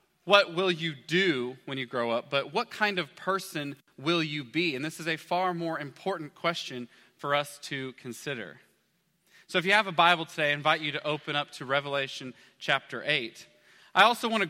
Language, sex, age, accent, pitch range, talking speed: English, male, 30-49, American, 150-180 Hz, 200 wpm